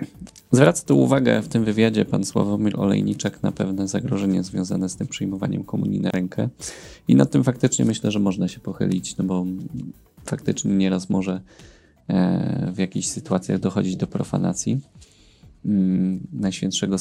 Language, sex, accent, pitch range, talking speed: Polish, male, native, 95-110 Hz, 140 wpm